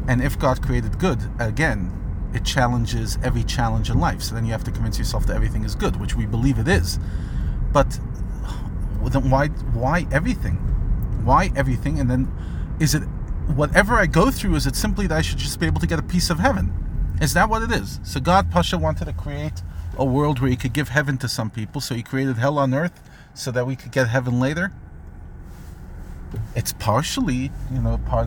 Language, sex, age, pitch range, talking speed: English, male, 30-49, 90-130 Hz, 205 wpm